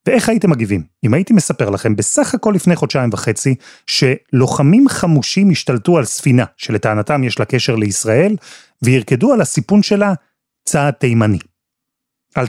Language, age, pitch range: Hebrew, 30-49, 110-155 Hz